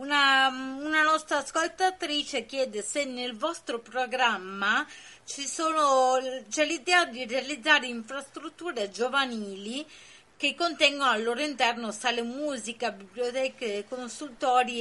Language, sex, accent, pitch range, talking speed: Italian, female, native, 235-300 Hz, 105 wpm